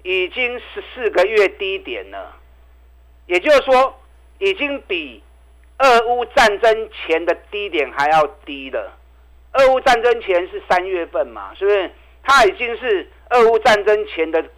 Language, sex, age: Chinese, male, 50-69